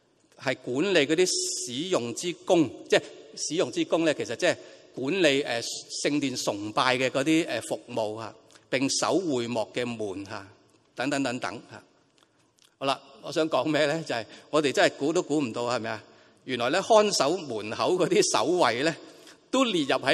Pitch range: 120-200 Hz